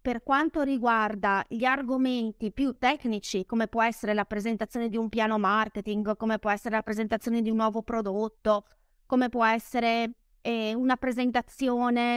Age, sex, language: 20-39, female, Italian